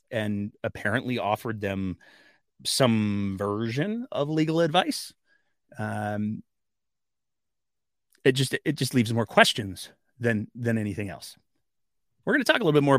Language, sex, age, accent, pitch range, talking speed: English, male, 30-49, American, 110-150 Hz, 135 wpm